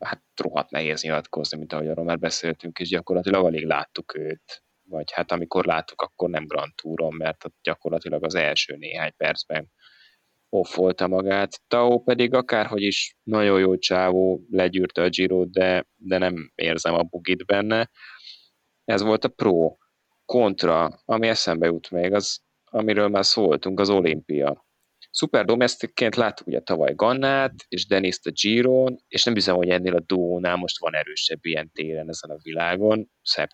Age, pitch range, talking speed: 20-39, 85-110 Hz, 155 wpm